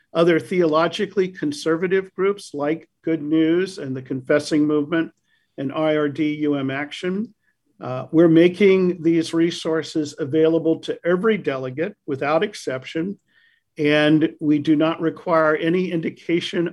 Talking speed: 115 wpm